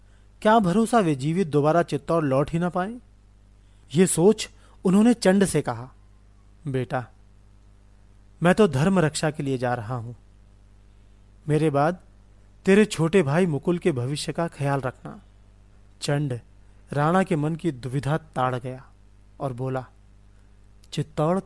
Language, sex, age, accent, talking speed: Hindi, male, 40-59, native, 135 wpm